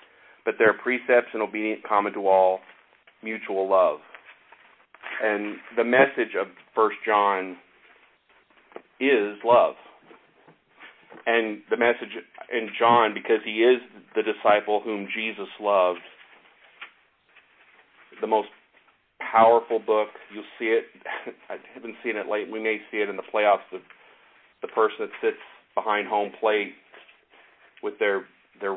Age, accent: 40-59, American